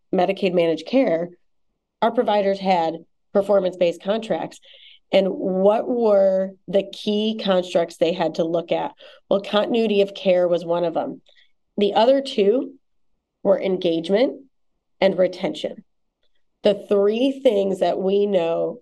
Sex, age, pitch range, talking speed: female, 30-49, 180-210 Hz, 130 wpm